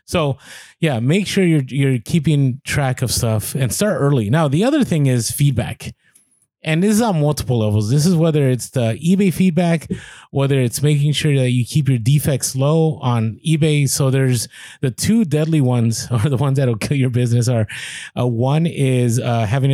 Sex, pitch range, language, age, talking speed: male, 120-145 Hz, English, 30-49, 195 wpm